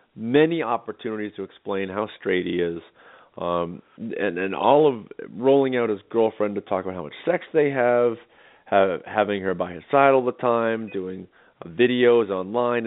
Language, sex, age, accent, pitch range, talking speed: English, male, 40-59, American, 105-135 Hz, 175 wpm